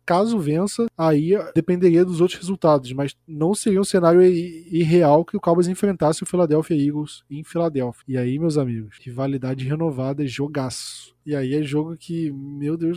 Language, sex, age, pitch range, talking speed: Portuguese, male, 20-39, 145-180 Hz, 170 wpm